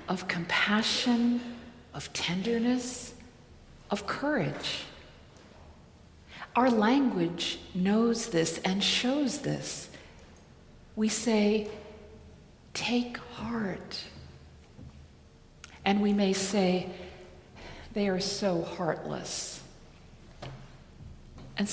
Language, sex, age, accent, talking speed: English, female, 50-69, American, 70 wpm